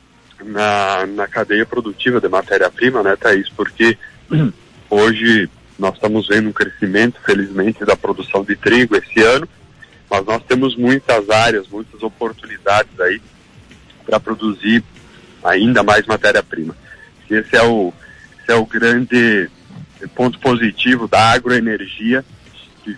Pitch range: 105-125 Hz